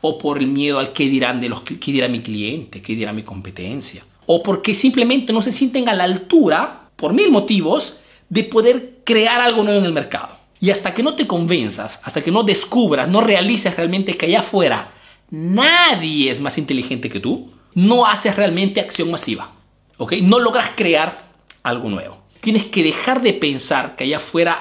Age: 40-59